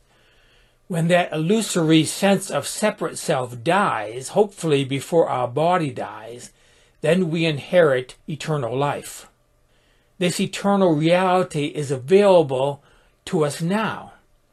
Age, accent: 60-79, American